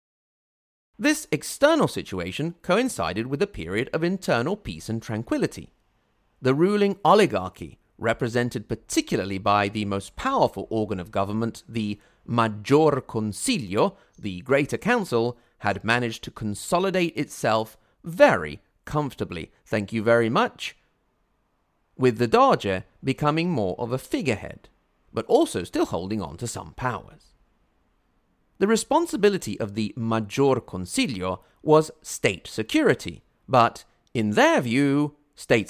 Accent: British